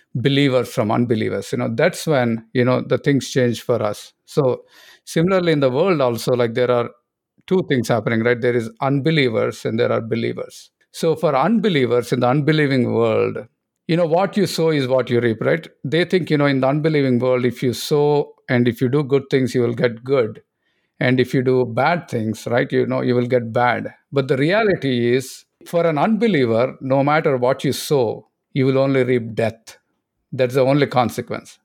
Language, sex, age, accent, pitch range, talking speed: English, male, 50-69, Indian, 125-150 Hz, 200 wpm